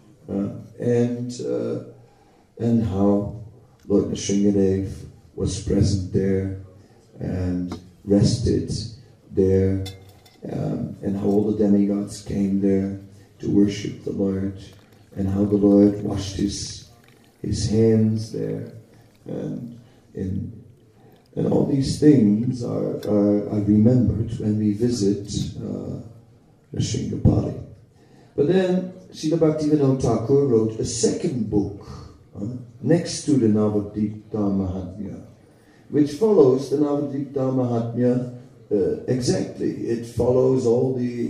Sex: male